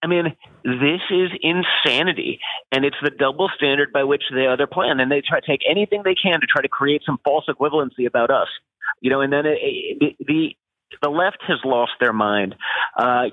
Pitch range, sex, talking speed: 145-215 Hz, male, 205 wpm